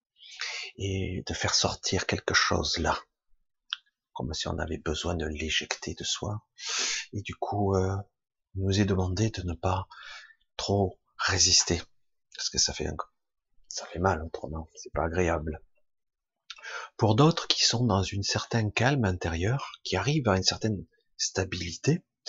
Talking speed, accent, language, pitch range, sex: 150 wpm, French, French, 90-120 Hz, male